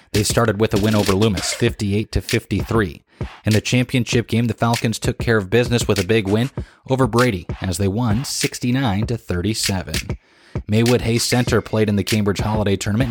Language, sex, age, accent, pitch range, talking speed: English, male, 20-39, American, 105-125 Hz, 190 wpm